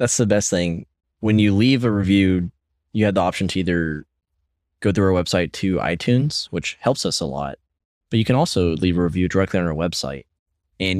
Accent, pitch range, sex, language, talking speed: American, 75-95 Hz, male, English, 205 wpm